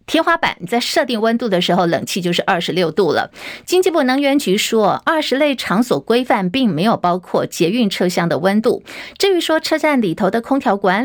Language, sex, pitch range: Chinese, female, 195-270 Hz